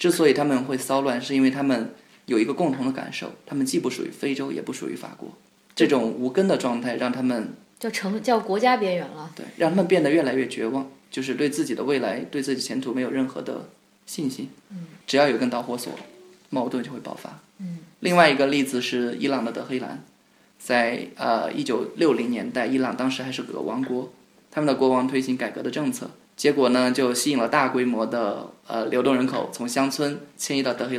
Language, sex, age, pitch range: Chinese, male, 20-39, 125-160 Hz